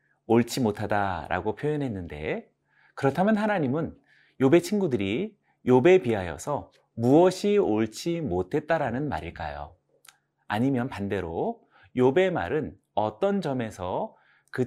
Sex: male